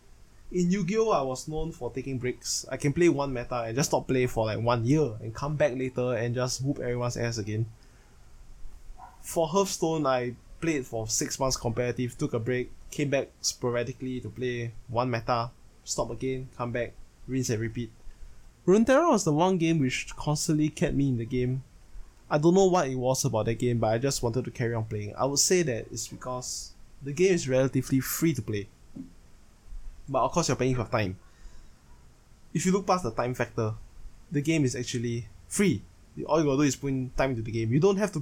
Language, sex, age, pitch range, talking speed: English, male, 20-39, 115-145 Hz, 205 wpm